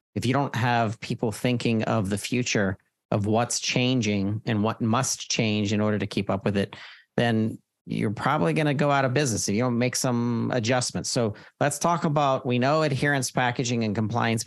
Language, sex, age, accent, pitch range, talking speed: English, male, 40-59, American, 105-130 Hz, 200 wpm